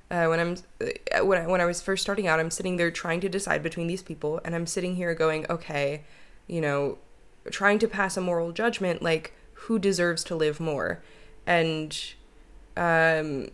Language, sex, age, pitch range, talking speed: English, female, 20-39, 170-225 Hz, 185 wpm